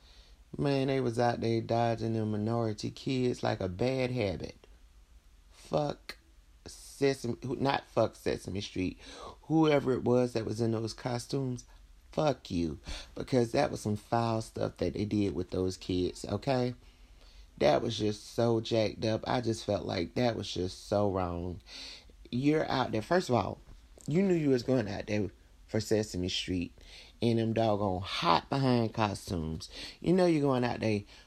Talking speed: 160 wpm